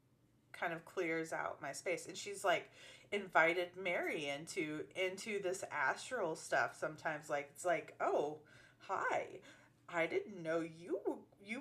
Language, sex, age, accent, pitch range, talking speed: English, female, 30-49, American, 150-200 Hz, 140 wpm